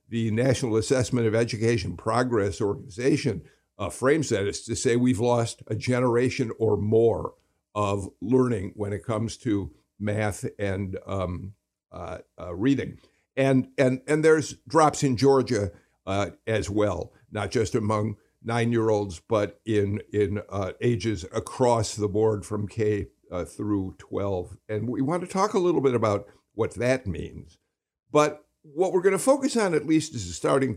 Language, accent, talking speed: English, American, 160 wpm